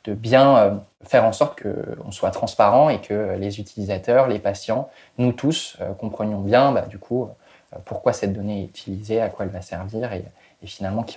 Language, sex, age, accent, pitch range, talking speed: French, male, 20-39, French, 105-125 Hz, 210 wpm